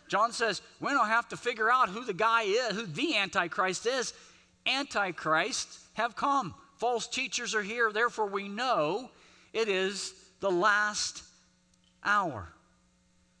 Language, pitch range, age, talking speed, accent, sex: English, 130-215 Hz, 50-69, 140 wpm, American, male